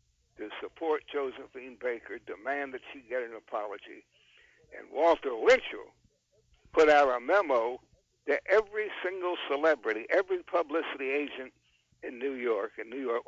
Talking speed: 135 wpm